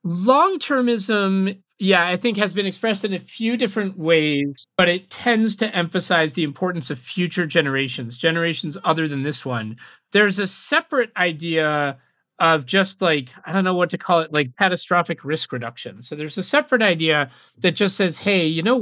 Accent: American